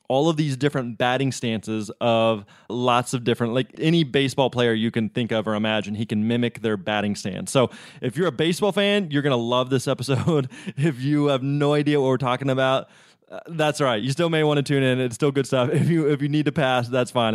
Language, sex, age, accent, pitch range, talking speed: English, male, 20-39, American, 120-150 Hz, 240 wpm